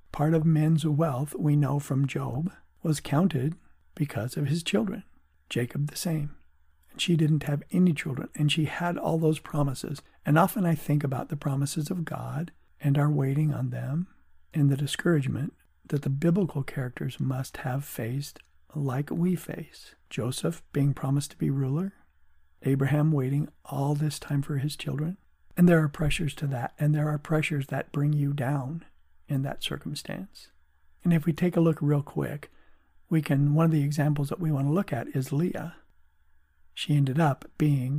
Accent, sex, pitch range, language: American, male, 130-160 Hz, English